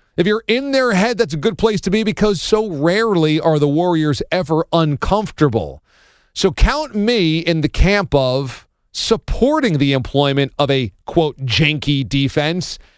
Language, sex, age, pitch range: English, male, 40-59, 125-175 Hz